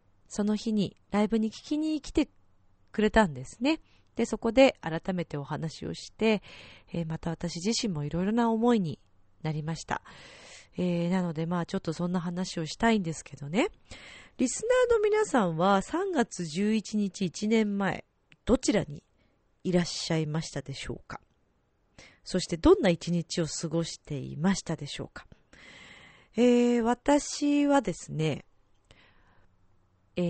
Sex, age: female, 40-59